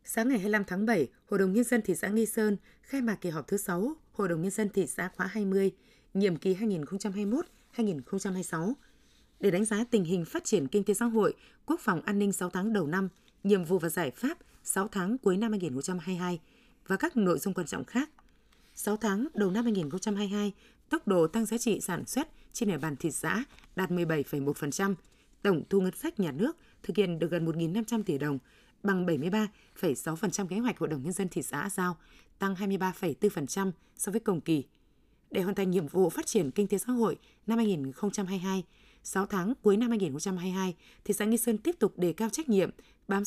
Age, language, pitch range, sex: 20-39, Vietnamese, 180-225 Hz, female